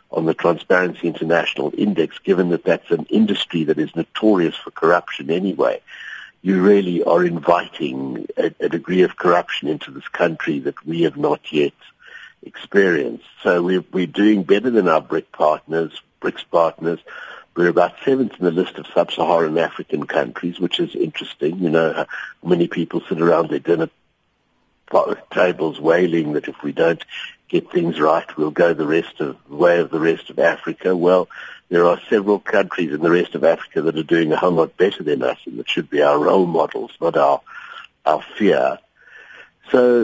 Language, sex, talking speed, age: English, male, 175 wpm, 60-79